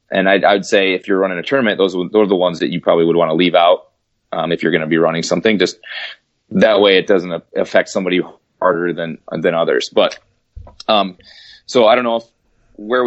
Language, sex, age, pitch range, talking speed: English, male, 30-49, 95-115 Hz, 225 wpm